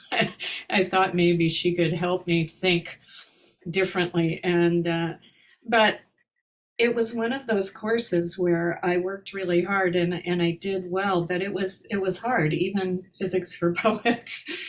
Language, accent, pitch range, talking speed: English, American, 165-190 Hz, 155 wpm